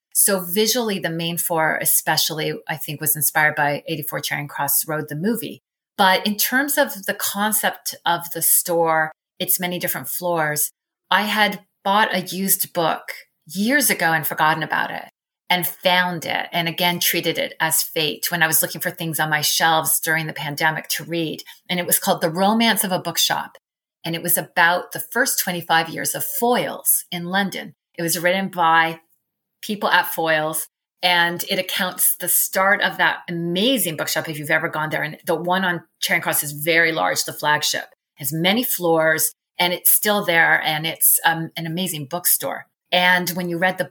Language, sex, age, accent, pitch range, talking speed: English, female, 30-49, American, 160-185 Hz, 185 wpm